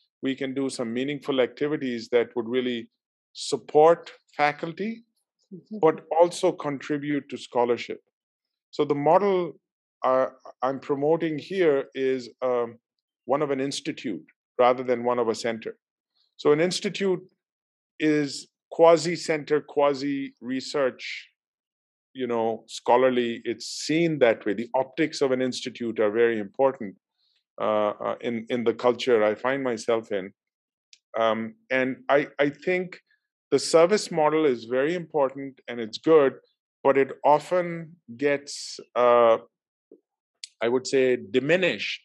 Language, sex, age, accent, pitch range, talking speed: English, male, 50-69, Indian, 120-160 Hz, 130 wpm